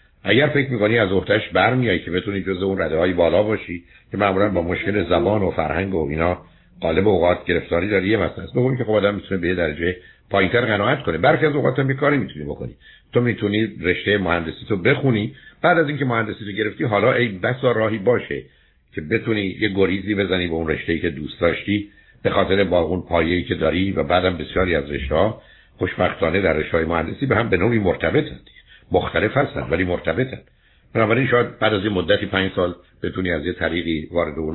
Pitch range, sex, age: 85-105 Hz, male, 60-79